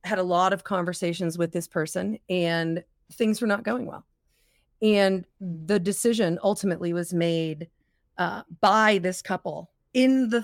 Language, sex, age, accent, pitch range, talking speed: English, female, 40-59, American, 170-210 Hz, 150 wpm